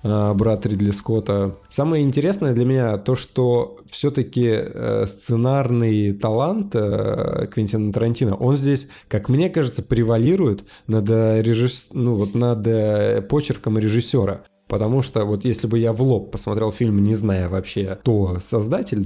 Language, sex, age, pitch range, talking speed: Russian, male, 20-39, 105-130 Hz, 125 wpm